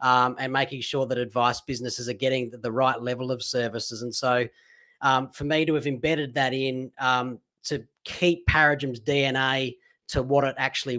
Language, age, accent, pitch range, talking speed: English, 30-49, Australian, 135-160 Hz, 185 wpm